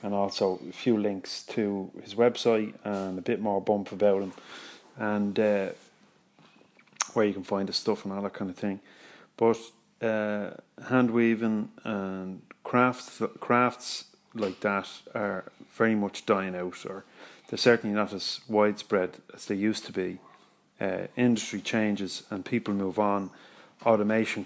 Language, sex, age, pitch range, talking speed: English, male, 30-49, 100-120 Hz, 150 wpm